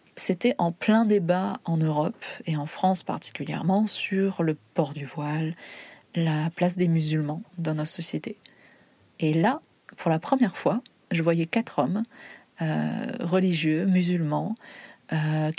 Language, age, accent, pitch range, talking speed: French, 30-49, French, 155-190 Hz, 140 wpm